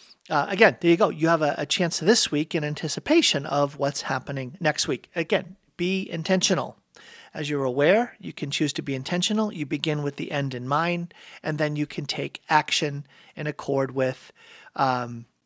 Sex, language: male, English